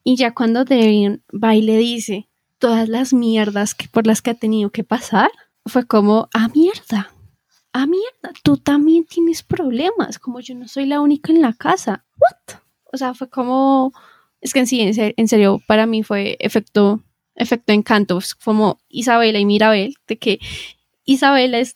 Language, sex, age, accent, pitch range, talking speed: Spanish, female, 10-29, Colombian, 215-265 Hz, 175 wpm